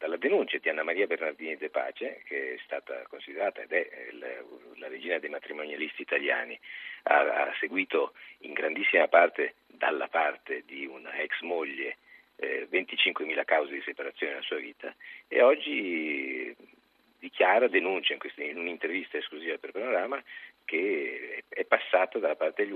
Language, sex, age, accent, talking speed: Italian, male, 50-69, native, 140 wpm